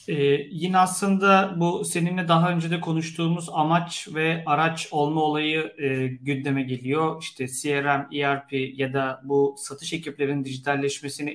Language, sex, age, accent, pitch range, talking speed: Turkish, male, 40-59, native, 135-165 Hz, 135 wpm